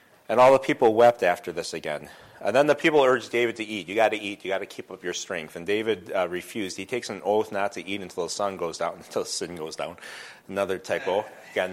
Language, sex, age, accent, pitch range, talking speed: English, male, 30-49, American, 95-120 Hz, 260 wpm